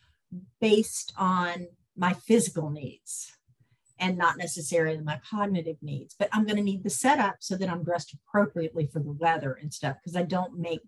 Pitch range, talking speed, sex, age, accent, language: 165-205 Hz, 170 wpm, female, 50-69, American, English